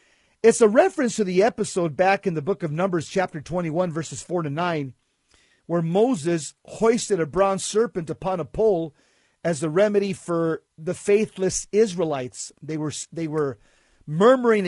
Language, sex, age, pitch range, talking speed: English, male, 50-69, 165-210 Hz, 160 wpm